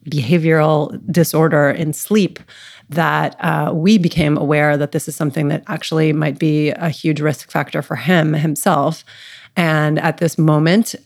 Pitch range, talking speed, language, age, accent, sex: 150-165 Hz, 150 wpm, English, 30-49, American, female